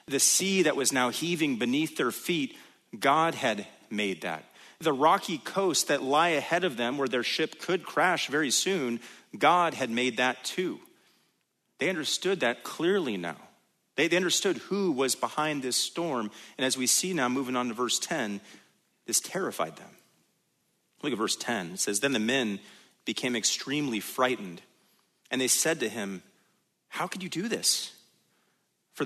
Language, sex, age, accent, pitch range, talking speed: English, male, 30-49, American, 120-160 Hz, 170 wpm